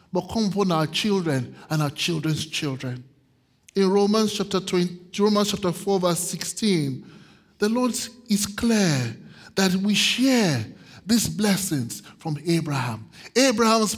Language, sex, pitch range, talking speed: English, male, 150-195 Hz, 125 wpm